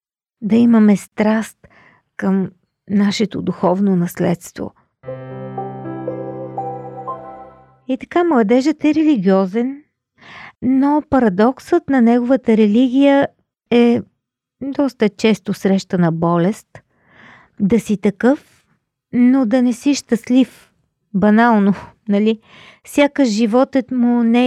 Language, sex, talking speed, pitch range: Bulgarian, female, 90 wpm, 195-255 Hz